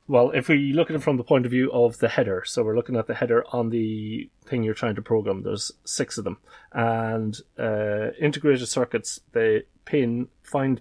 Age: 30-49